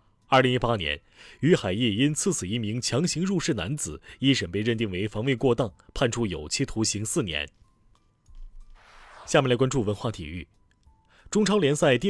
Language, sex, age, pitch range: Chinese, male, 30-49, 100-140 Hz